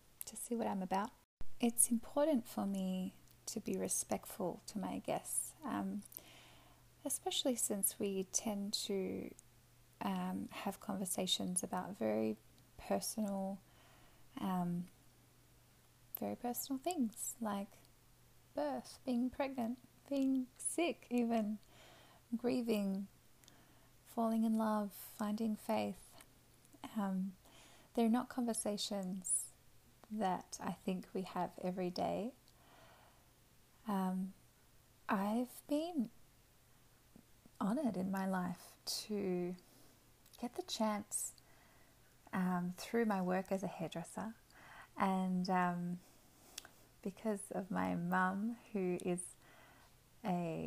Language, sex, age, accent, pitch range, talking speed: English, female, 10-29, Australian, 185-235 Hz, 95 wpm